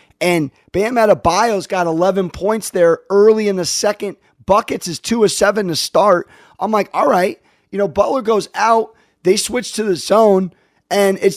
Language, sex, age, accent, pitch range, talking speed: English, male, 30-49, American, 170-210 Hz, 180 wpm